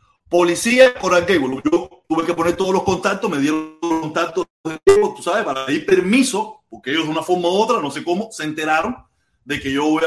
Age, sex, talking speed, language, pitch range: 30-49, male, 205 wpm, Spanish, 160-235 Hz